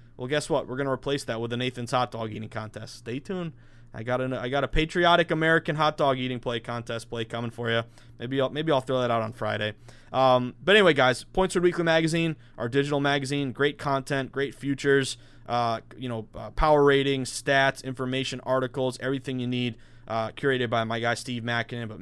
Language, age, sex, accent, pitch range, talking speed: English, 20-39, male, American, 120-140 Hz, 205 wpm